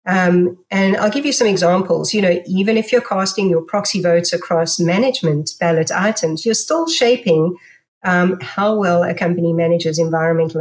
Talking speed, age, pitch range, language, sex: 170 wpm, 40-59, 165-195 Hz, English, female